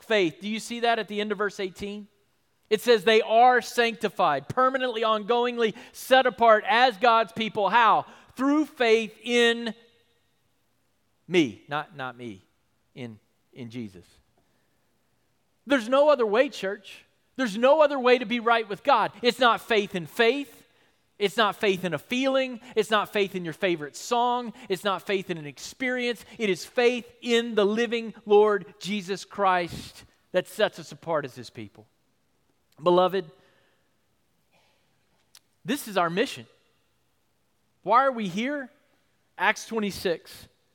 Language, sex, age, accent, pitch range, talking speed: English, male, 40-59, American, 185-235 Hz, 145 wpm